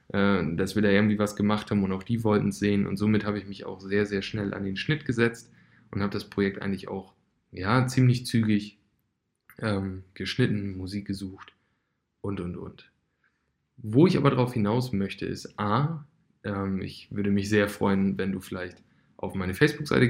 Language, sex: German, male